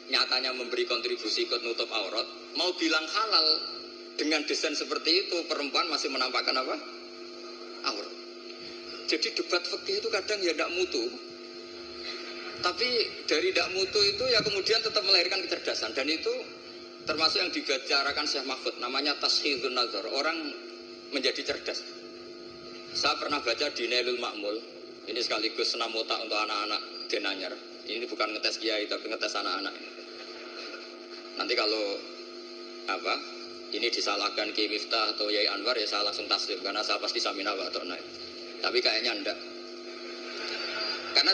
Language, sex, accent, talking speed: Indonesian, male, native, 130 wpm